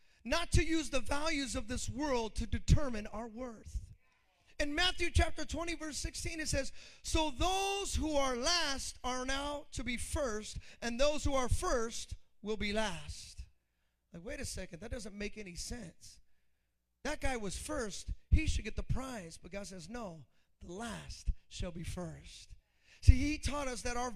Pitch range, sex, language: 200-270 Hz, male, English